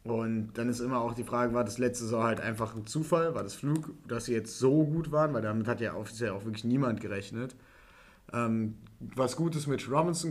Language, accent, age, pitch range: German, German, 30-49, 110-130 Hz